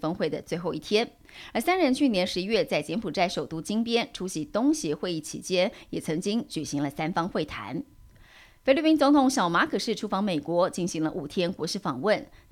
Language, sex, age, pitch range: Chinese, female, 30-49, 170-235 Hz